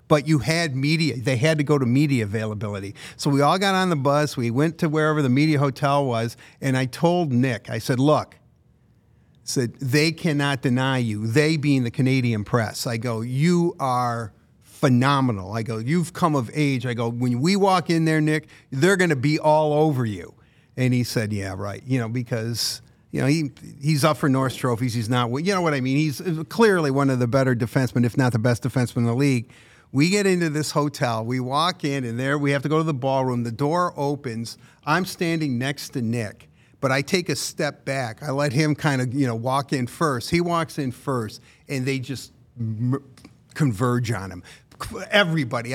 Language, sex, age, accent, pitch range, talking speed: English, male, 50-69, American, 125-160 Hz, 210 wpm